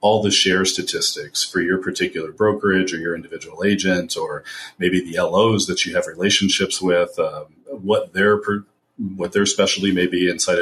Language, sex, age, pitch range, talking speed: English, male, 40-59, 90-105 Hz, 170 wpm